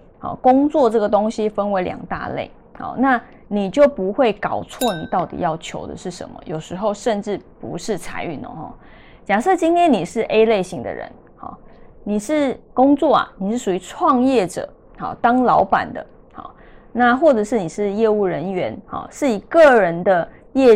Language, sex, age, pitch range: Chinese, female, 20-39, 195-270 Hz